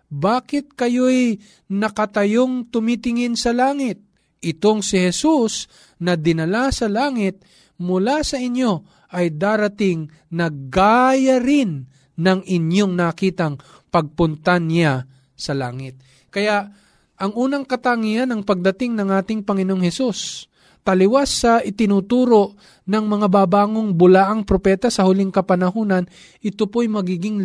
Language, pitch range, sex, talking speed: Filipino, 180-225 Hz, male, 110 wpm